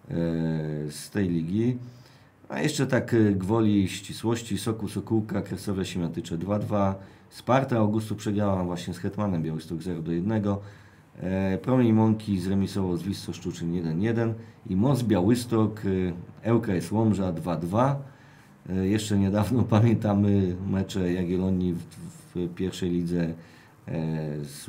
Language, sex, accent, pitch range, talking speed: Polish, male, native, 90-110 Hz, 110 wpm